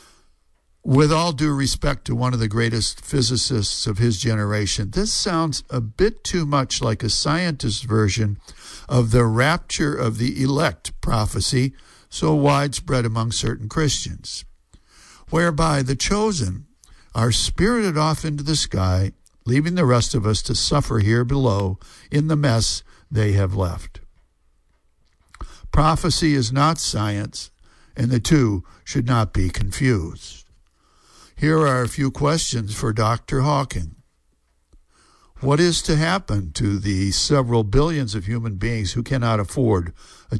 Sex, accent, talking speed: male, American, 140 wpm